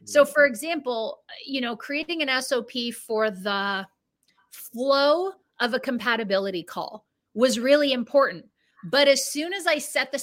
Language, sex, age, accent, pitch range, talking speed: English, female, 30-49, American, 235-290 Hz, 145 wpm